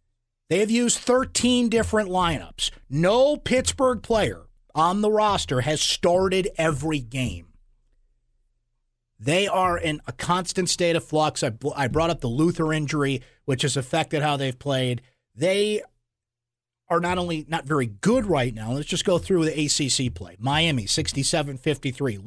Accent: American